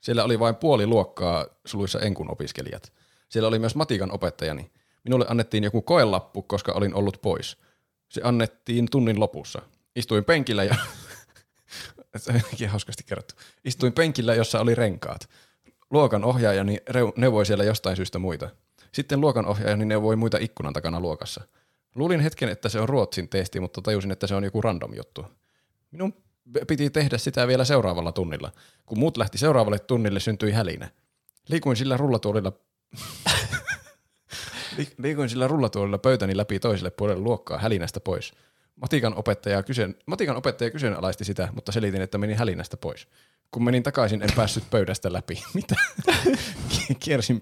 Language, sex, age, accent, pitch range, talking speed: Finnish, male, 20-39, native, 100-125 Hz, 140 wpm